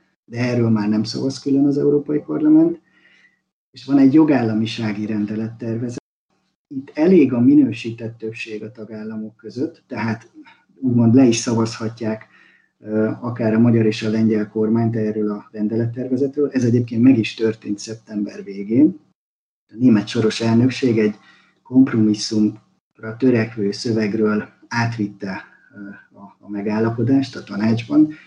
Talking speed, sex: 120 wpm, male